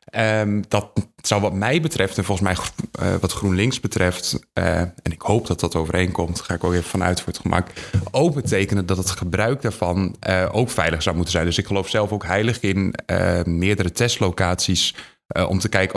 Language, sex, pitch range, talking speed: Dutch, male, 90-105 Hz, 200 wpm